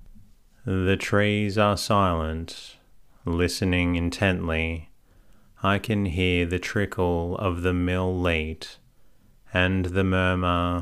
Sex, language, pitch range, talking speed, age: male, English, 85-95 Hz, 100 wpm, 30-49